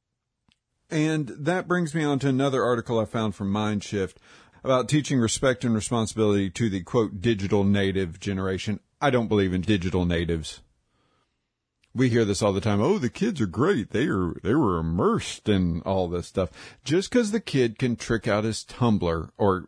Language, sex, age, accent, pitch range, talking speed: English, male, 50-69, American, 95-120 Hz, 180 wpm